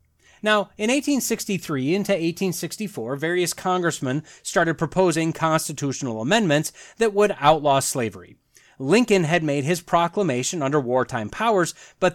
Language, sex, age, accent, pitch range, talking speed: English, male, 30-49, American, 130-195 Hz, 120 wpm